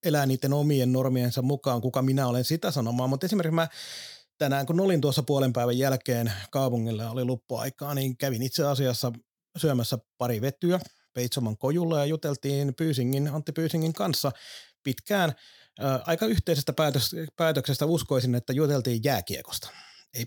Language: Finnish